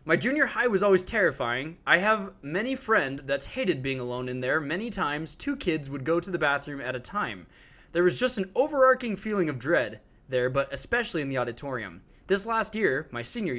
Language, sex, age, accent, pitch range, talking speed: English, male, 20-39, American, 130-185 Hz, 210 wpm